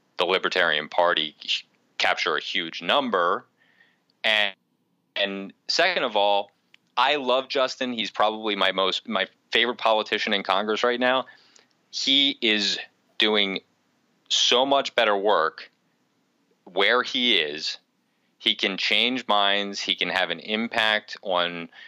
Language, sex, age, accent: English, male, 30-49, American